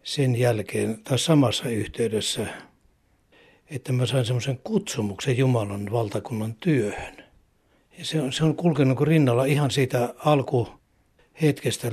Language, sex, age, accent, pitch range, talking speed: Finnish, male, 60-79, native, 115-135 Hz, 115 wpm